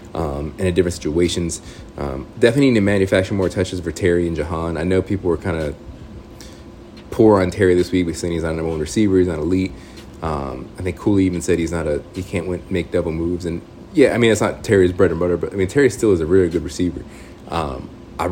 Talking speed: 245 wpm